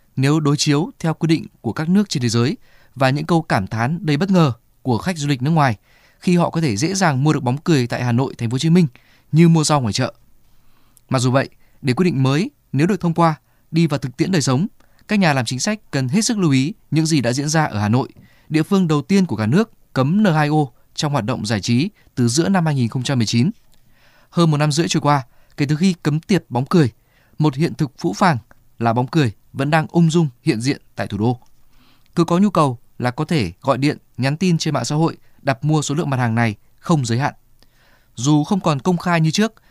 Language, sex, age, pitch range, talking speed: Vietnamese, male, 20-39, 125-170 Hz, 250 wpm